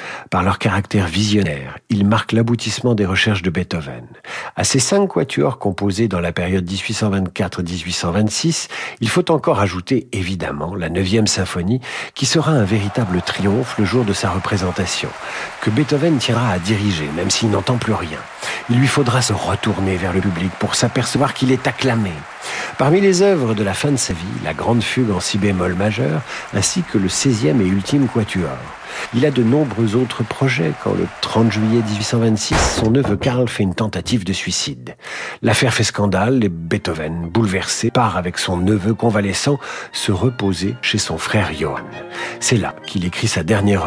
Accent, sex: French, male